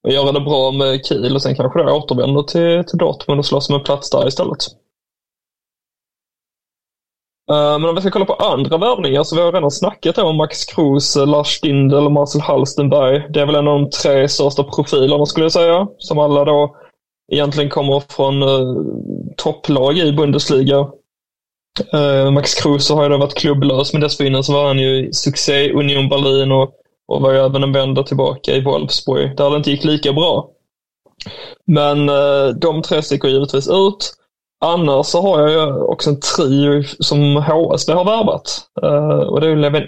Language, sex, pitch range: Swedish, male, 140-155 Hz